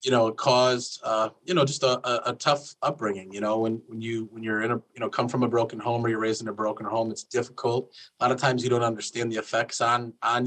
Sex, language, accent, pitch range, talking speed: male, English, American, 115-130 Hz, 280 wpm